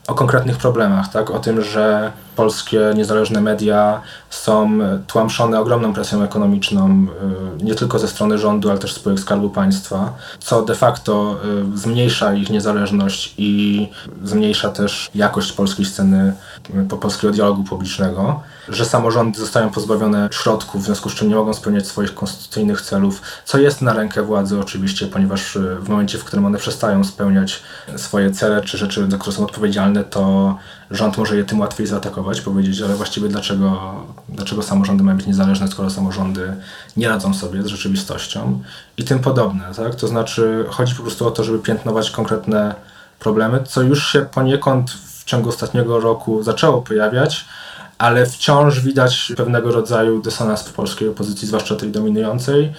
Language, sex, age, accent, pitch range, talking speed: Polish, male, 20-39, native, 100-120 Hz, 155 wpm